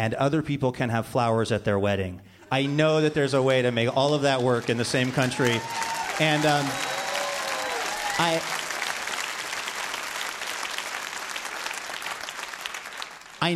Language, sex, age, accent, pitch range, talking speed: English, male, 40-59, American, 115-150 Hz, 130 wpm